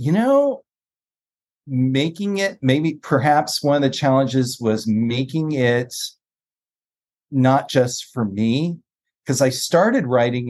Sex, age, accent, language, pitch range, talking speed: male, 40-59, American, English, 115-150 Hz, 120 wpm